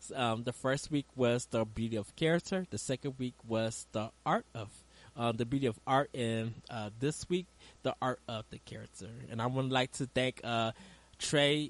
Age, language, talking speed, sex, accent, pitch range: 20-39, English, 195 wpm, male, American, 115-145 Hz